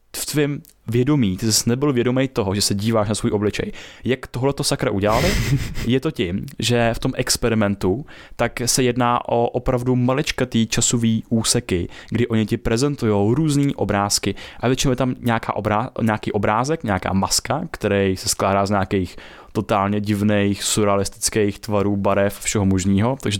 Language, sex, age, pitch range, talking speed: Czech, male, 20-39, 105-130 Hz, 160 wpm